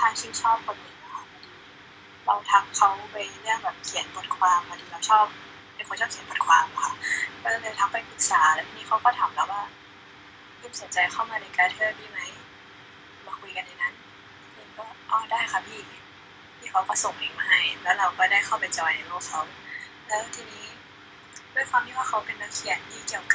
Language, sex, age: Thai, female, 10-29